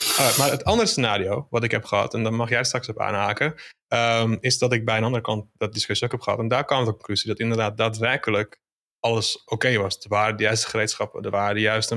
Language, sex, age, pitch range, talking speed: Dutch, male, 20-39, 105-120 Hz, 250 wpm